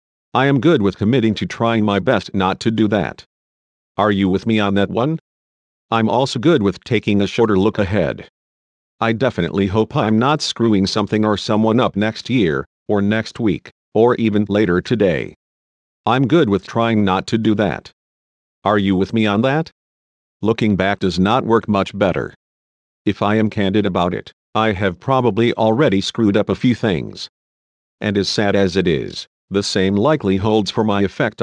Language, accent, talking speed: English, American, 185 wpm